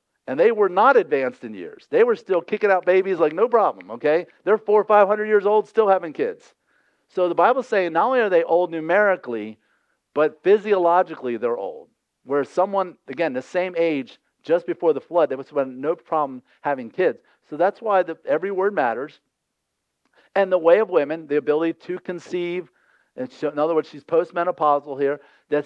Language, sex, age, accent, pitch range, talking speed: English, male, 50-69, American, 150-205 Hz, 190 wpm